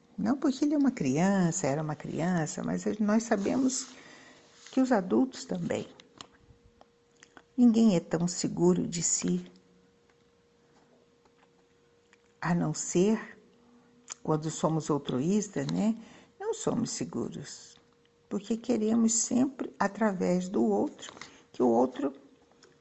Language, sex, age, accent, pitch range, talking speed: Portuguese, female, 60-79, Brazilian, 150-225 Hz, 105 wpm